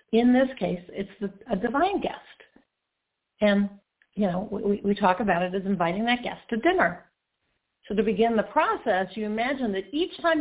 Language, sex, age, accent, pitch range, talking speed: English, female, 50-69, American, 200-260 Hz, 175 wpm